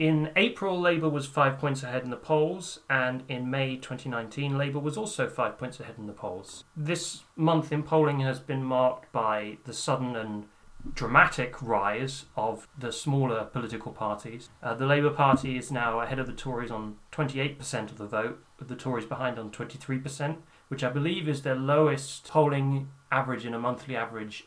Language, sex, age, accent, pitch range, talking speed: English, male, 30-49, British, 120-150 Hz, 180 wpm